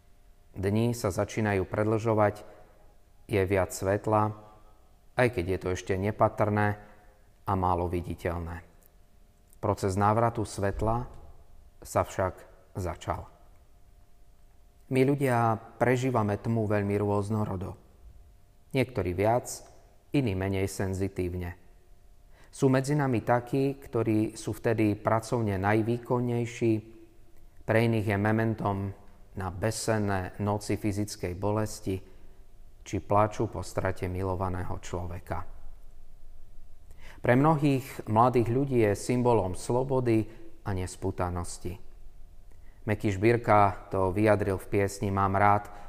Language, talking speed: Slovak, 95 wpm